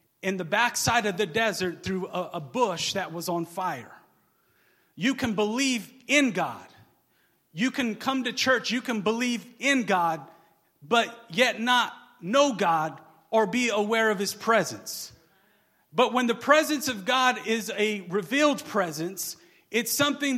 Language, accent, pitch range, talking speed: English, American, 185-255 Hz, 150 wpm